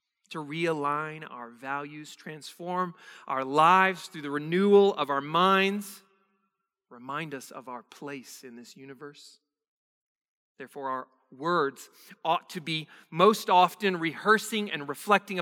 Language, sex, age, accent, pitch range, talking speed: English, male, 40-59, American, 155-210 Hz, 125 wpm